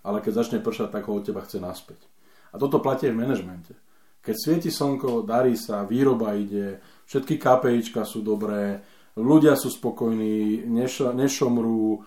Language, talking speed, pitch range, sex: Slovak, 155 wpm, 110-125 Hz, male